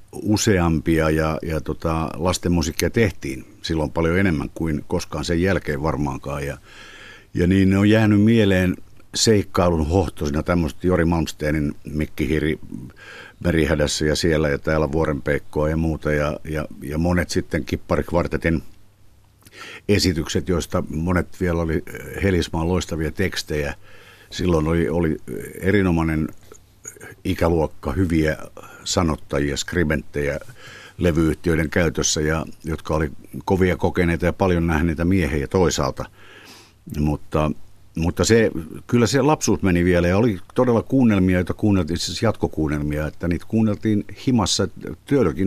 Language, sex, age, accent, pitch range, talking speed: Finnish, male, 60-79, native, 75-95 Hz, 120 wpm